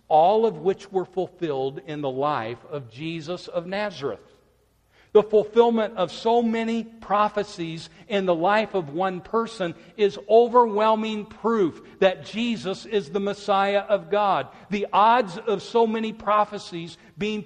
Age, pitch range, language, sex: 50-69, 140-215 Hz, English, male